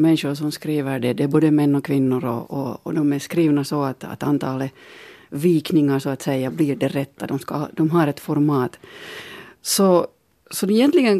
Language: Finnish